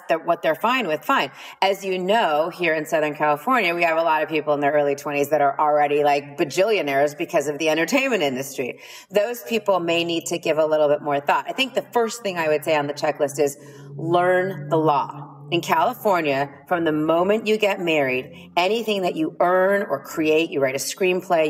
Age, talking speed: 30-49, 210 wpm